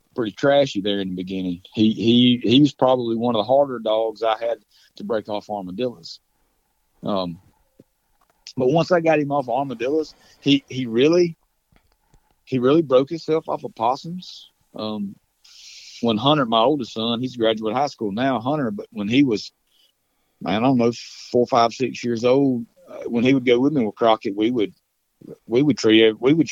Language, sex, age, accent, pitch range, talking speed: English, male, 40-59, American, 110-145 Hz, 190 wpm